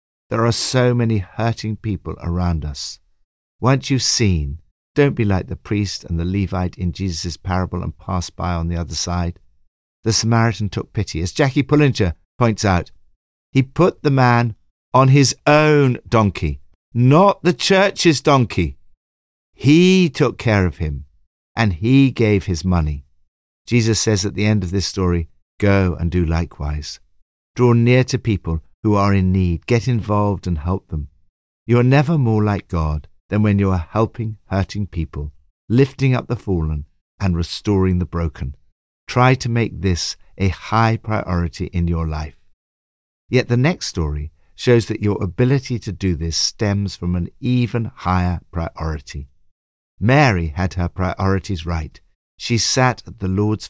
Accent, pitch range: British, 80-115 Hz